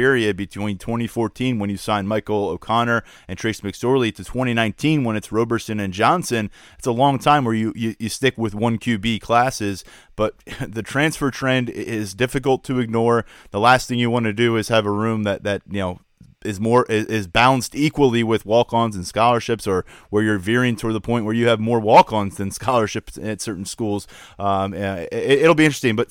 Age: 30-49